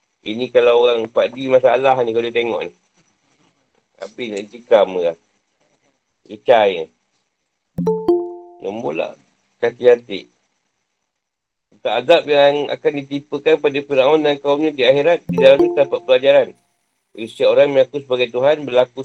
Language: Malay